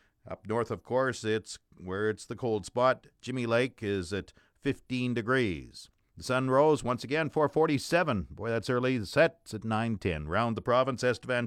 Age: 50-69